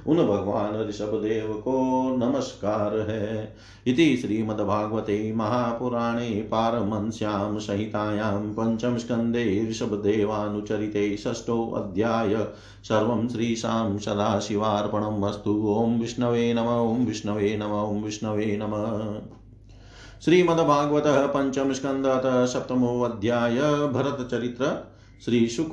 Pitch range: 110-125 Hz